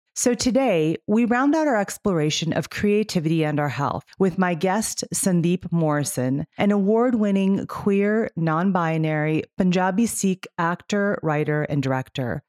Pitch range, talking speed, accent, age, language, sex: 155-205 Hz, 130 wpm, American, 30-49, English, female